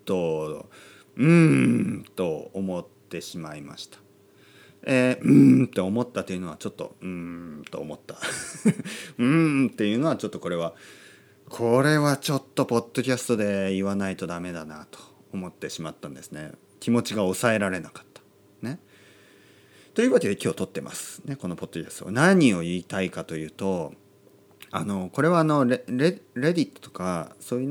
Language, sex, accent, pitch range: Japanese, male, native, 95-145 Hz